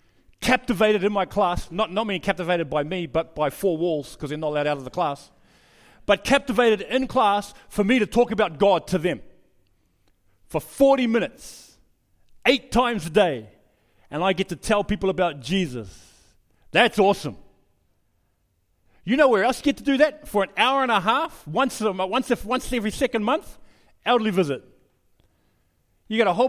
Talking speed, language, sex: 170 wpm, English, male